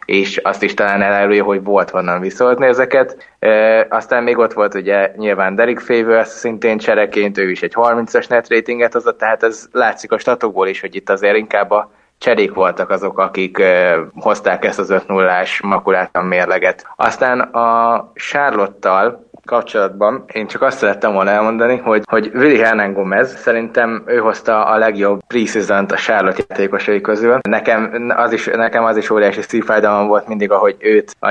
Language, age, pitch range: Hungarian, 20-39, 100-115 Hz